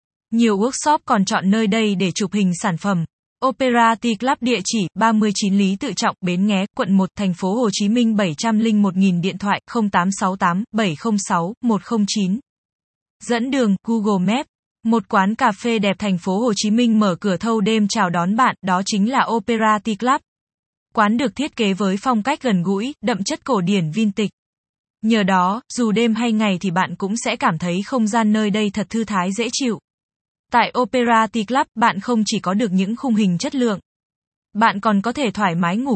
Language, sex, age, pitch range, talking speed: Vietnamese, female, 20-39, 195-230 Hz, 190 wpm